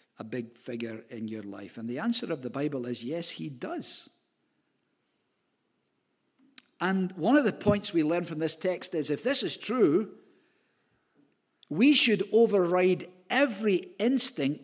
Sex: male